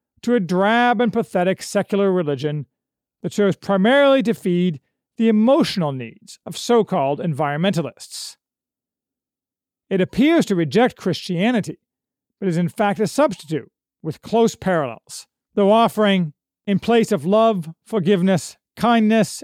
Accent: American